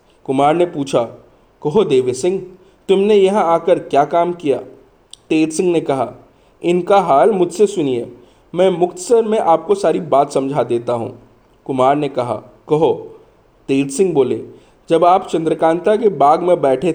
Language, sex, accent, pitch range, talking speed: Hindi, male, native, 155-200 Hz, 150 wpm